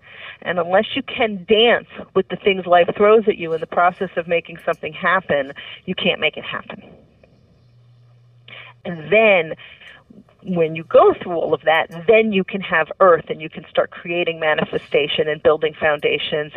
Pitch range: 160-220 Hz